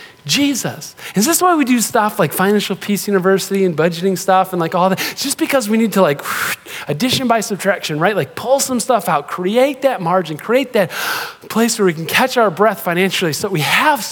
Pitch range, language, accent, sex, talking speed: 185-250 Hz, English, American, male, 215 wpm